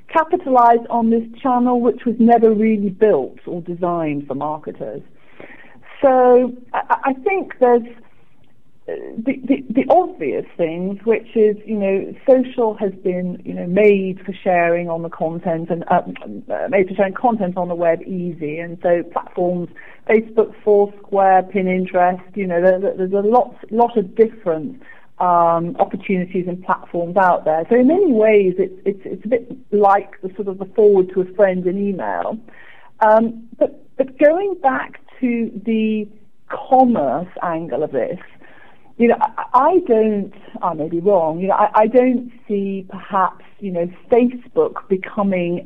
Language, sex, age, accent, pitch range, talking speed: English, female, 40-59, British, 185-240 Hz, 150 wpm